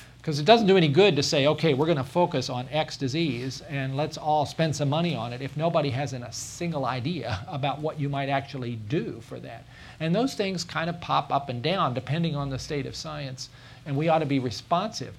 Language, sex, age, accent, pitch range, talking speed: English, male, 50-69, American, 130-155 Hz, 235 wpm